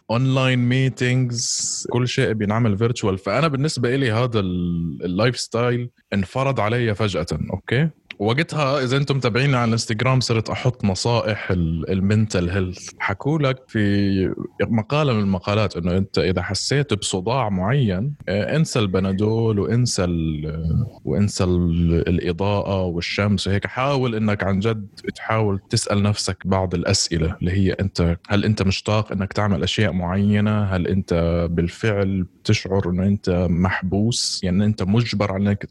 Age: 20-39